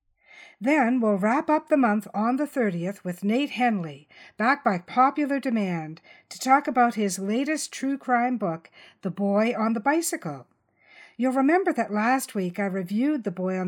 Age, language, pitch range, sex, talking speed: 50-69, English, 185-250 Hz, female, 170 wpm